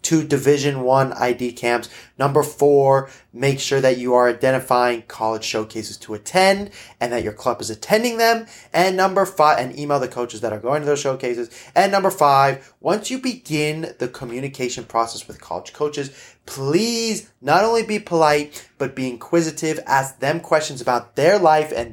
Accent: American